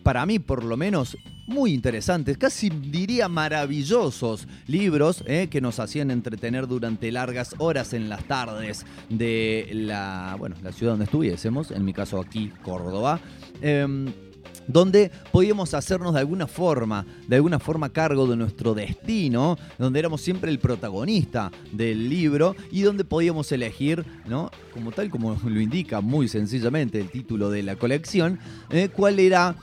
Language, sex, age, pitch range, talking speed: Spanish, male, 30-49, 110-155 Hz, 150 wpm